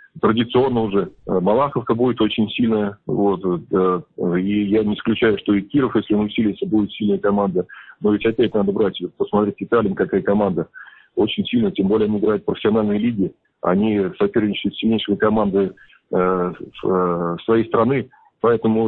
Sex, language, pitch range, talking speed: male, Russian, 100-110 Hz, 150 wpm